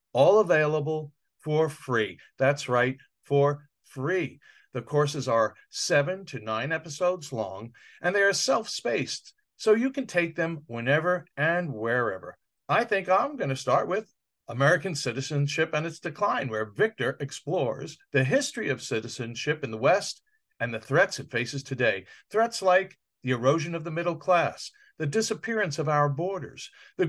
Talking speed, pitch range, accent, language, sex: 155 wpm, 135-195 Hz, American, English, male